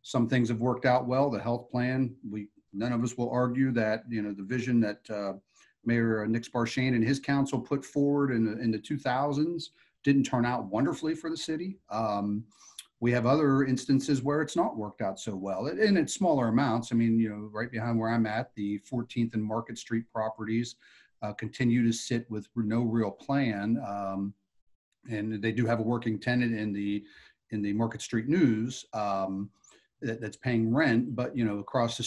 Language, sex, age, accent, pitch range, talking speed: English, male, 40-59, American, 110-125 Hz, 200 wpm